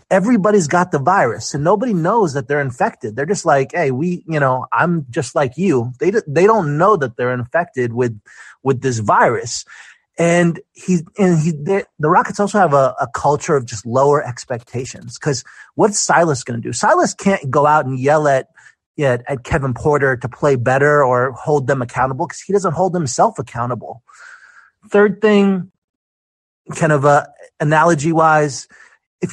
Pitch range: 135-190 Hz